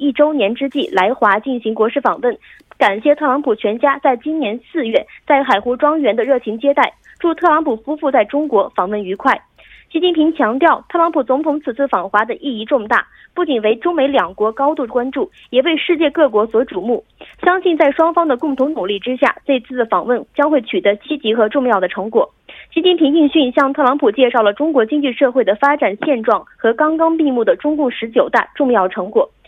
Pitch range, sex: 240-300 Hz, female